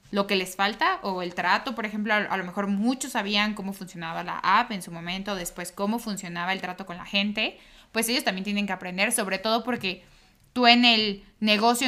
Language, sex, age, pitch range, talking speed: Spanish, female, 20-39, 190-220 Hz, 210 wpm